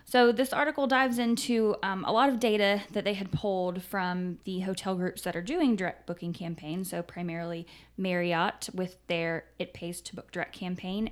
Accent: American